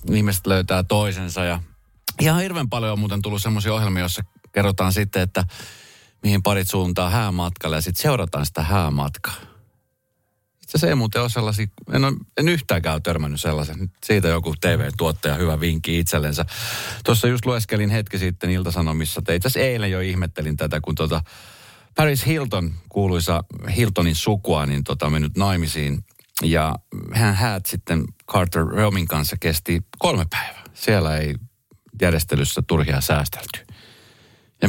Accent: native